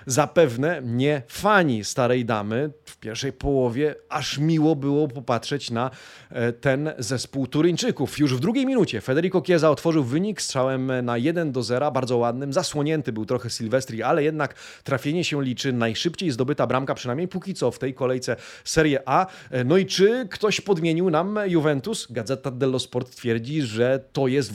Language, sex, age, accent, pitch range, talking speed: Polish, male, 30-49, native, 125-170 Hz, 155 wpm